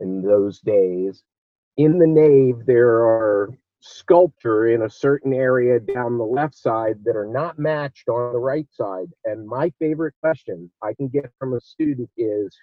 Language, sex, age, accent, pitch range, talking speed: English, male, 50-69, American, 115-160 Hz, 170 wpm